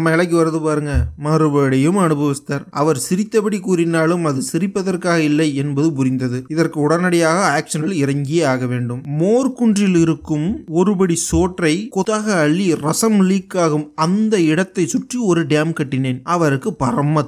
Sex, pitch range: male, 135-175 Hz